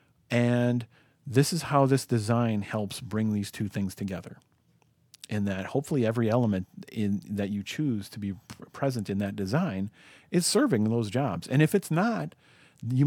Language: English